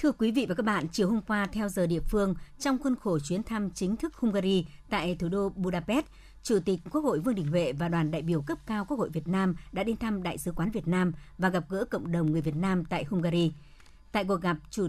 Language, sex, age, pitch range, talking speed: Vietnamese, male, 60-79, 165-210 Hz, 260 wpm